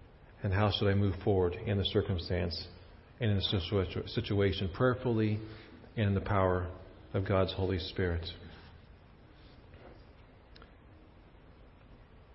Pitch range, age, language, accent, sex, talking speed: 105-135 Hz, 40-59, English, American, male, 115 wpm